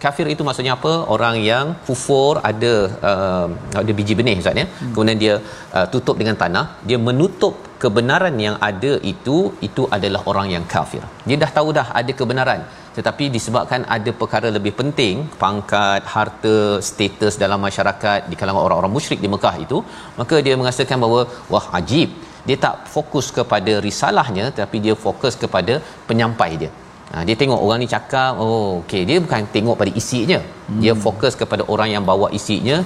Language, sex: Malayalam, male